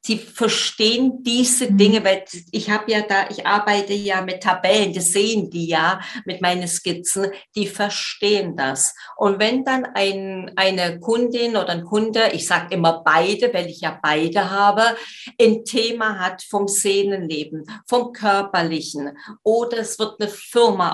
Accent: German